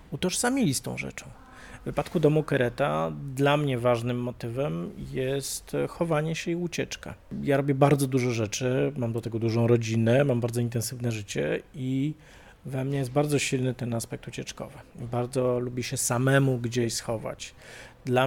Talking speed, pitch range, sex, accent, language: 155 wpm, 115-135 Hz, male, native, Polish